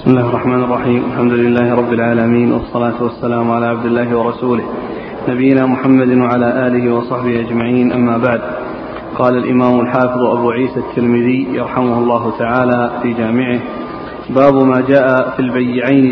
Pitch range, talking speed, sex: 125-140 Hz, 140 wpm, male